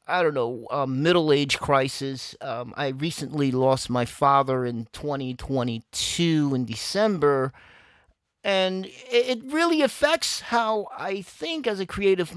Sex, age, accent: male, 40-59, American